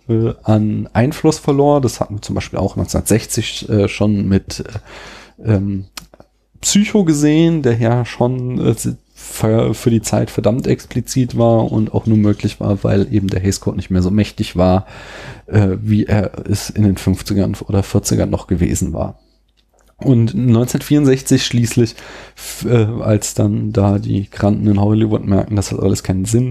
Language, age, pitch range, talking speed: German, 30-49, 100-120 Hz, 155 wpm